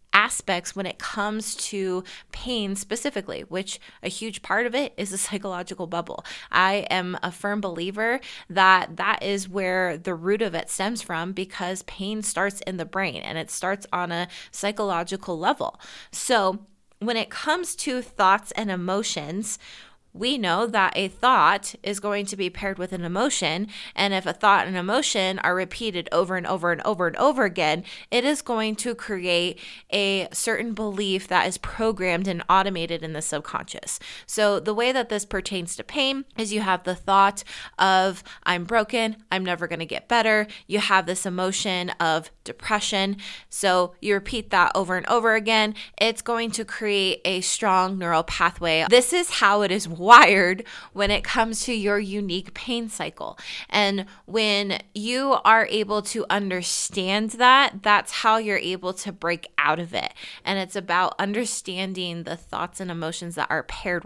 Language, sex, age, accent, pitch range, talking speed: English, female, 20-39, American, 185-215 Hz, 170 wpm